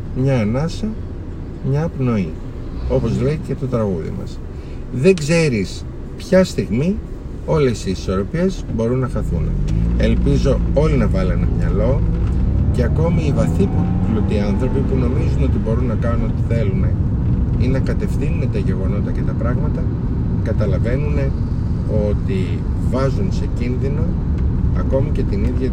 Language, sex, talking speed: Greek, male, 130 wpm